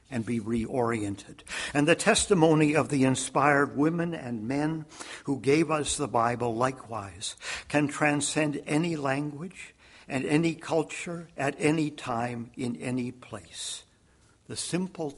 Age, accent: 60-79, American